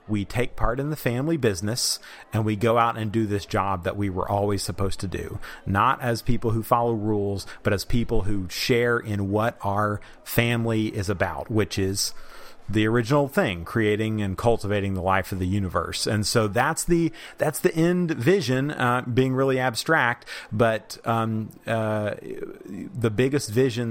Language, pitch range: English, 100-120 Hz